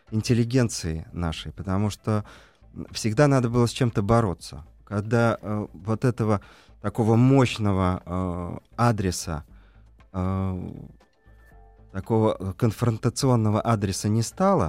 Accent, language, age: native, Russian, 30-49